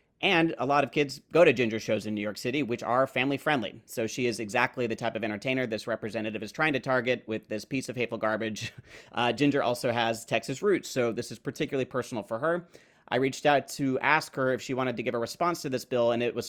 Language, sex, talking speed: English, male, 250 wpm